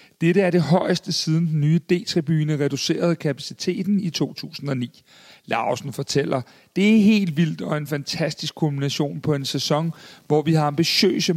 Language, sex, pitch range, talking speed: Danish, male, 135-170 Hz, 155 wpm